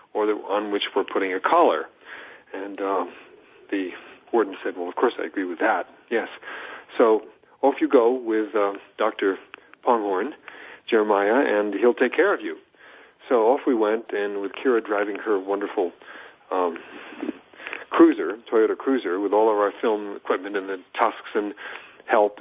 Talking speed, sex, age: 165 wpm, male, 40-59